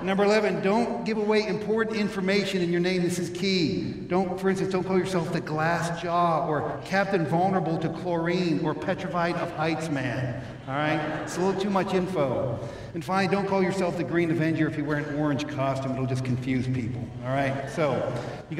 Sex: male